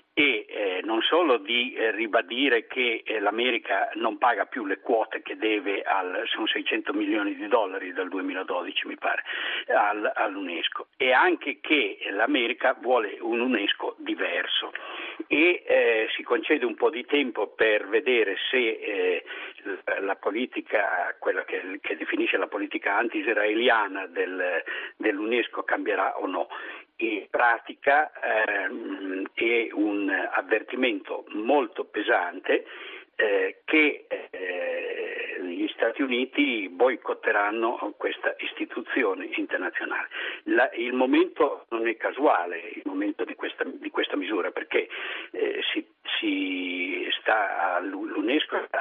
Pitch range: 330-465 Hz